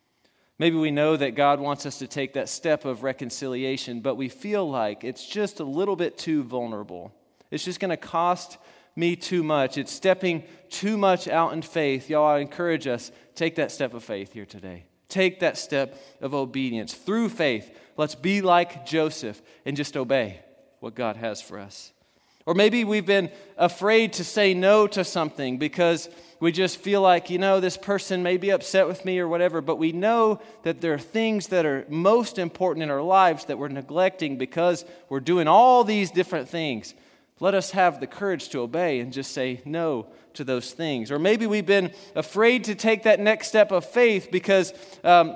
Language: English